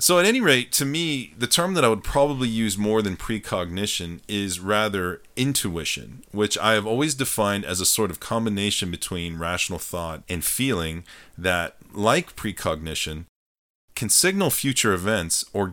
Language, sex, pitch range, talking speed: English, male, 85-115 Hz, 160 wpm